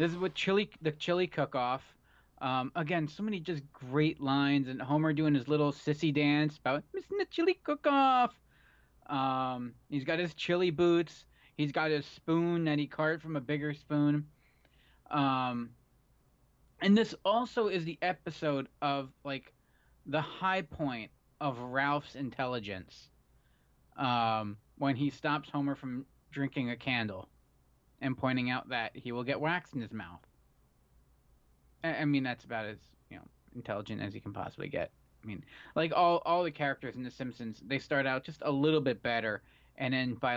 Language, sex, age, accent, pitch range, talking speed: English, male, 20-39, American, 125-155 Hz, 160 wpm